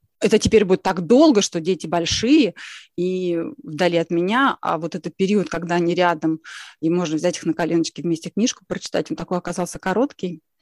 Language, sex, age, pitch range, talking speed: Russian, female, 20-39, 170-205 Hz, 180 wpm